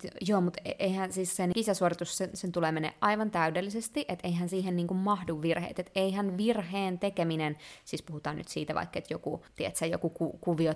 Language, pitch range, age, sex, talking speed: Finnish, 170-210 Hz, 20-39, female, 175 wpm